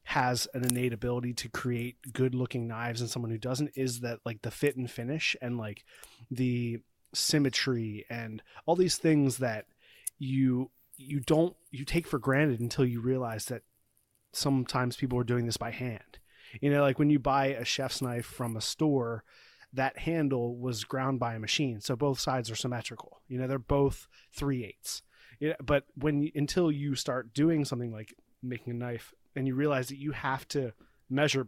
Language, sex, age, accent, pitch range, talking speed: English, male, 30-49, American, 120-140 Hz, 185 wpm